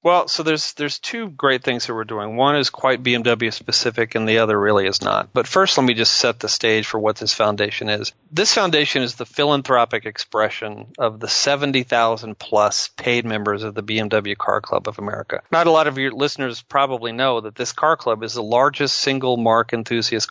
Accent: American